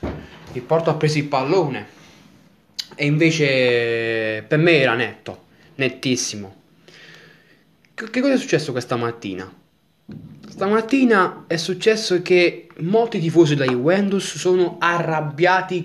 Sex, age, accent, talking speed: male, 20-39, native, 105 wpm